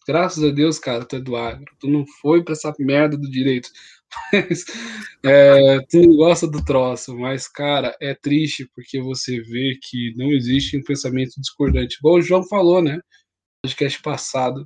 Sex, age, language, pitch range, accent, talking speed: male, 10-29, Portuguese, 135-175 Hz, Brazilian, 175 wpm